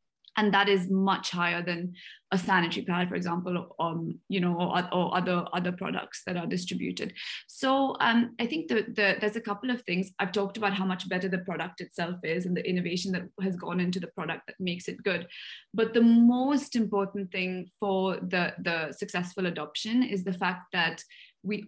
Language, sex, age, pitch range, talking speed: English, female, 20-39, 180-205 Hz, 200 wpm